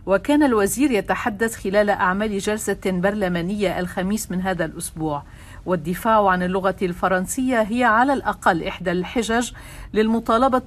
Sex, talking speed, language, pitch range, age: female, 120 wpm, Arabic, 180-215 Hz, 50-69